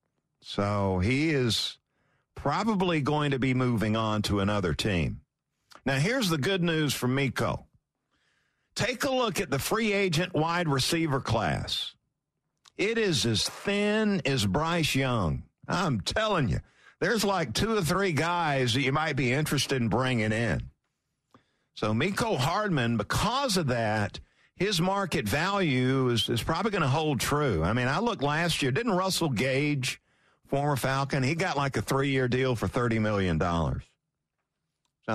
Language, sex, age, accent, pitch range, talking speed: English, male, 50-69, American, 115-175 Hz, 155 wpm